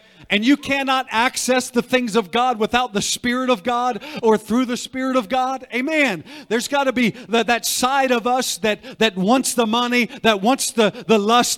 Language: English